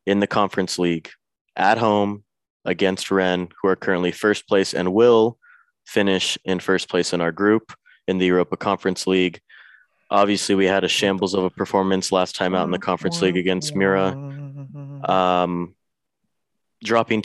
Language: English